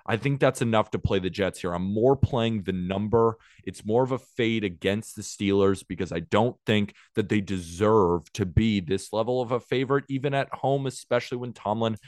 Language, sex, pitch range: English, male, 95-115 Hz